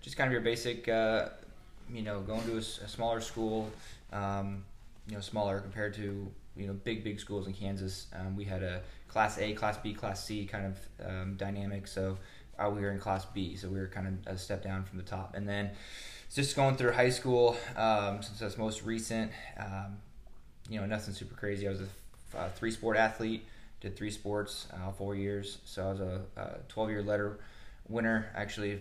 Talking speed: 205 wpm